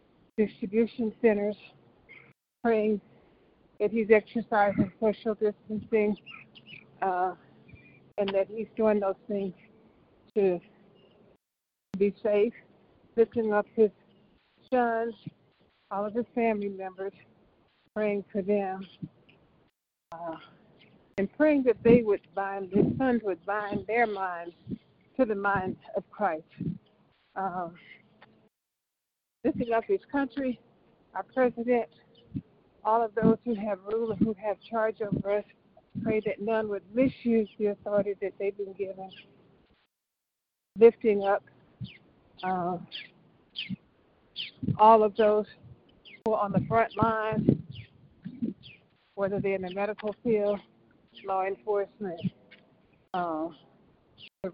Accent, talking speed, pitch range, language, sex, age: American, 110 wpm, 190-220 Hz, English, female, 50-69